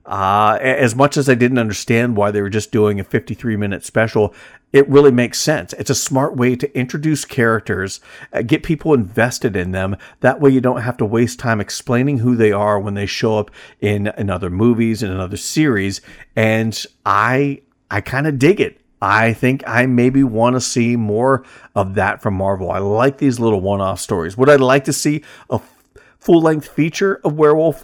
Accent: American